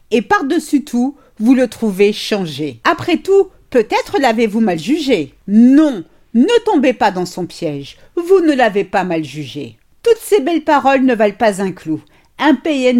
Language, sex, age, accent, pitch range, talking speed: French, female, 50-69, French, 195-295 Hz, 170 wpm